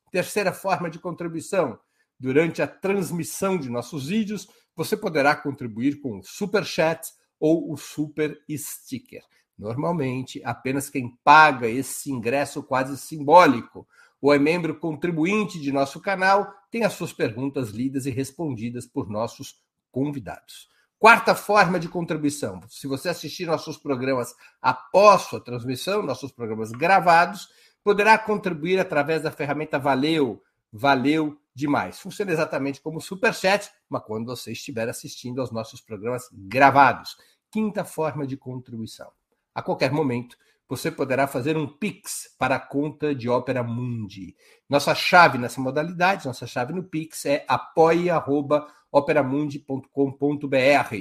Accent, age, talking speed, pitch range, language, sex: Brazilian, 60-79, 130 wpm, 130-170 Hz, Portuguese, male